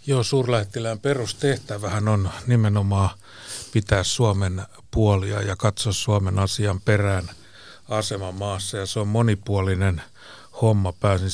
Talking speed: 105 wpm